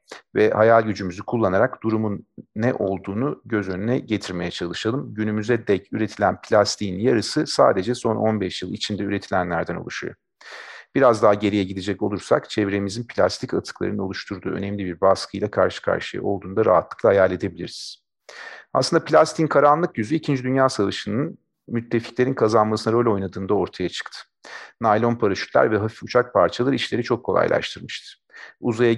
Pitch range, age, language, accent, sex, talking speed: 100-120 Hz, 40-59, Turkish, native, male, 135 wpm